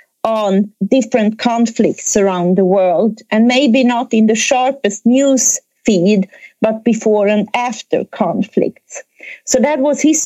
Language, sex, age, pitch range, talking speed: German, female, 40-59, 200-255 Hz, 135 wpm